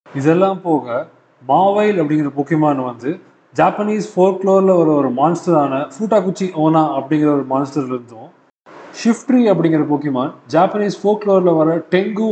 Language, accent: Tamil, native